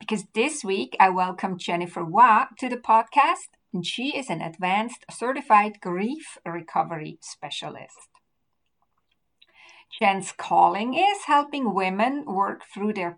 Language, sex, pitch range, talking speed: English, female, 190-265 Hz, 125 wpm